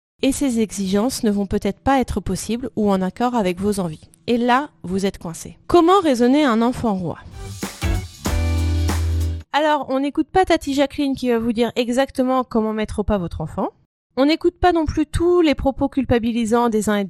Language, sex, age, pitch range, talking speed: French, female, 30-49, 200-265 Hz, 190 wpm